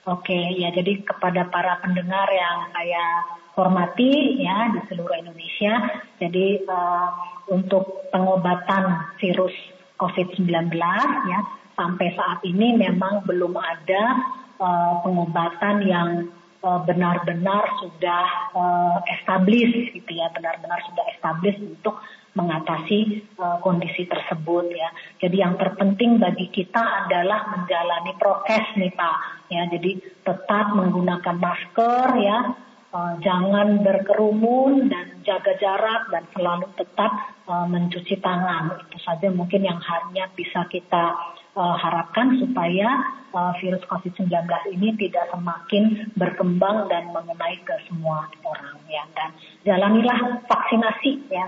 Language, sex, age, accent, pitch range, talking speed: Indonesian, female, 30-49, native, 175-205 Hz, 120 wpm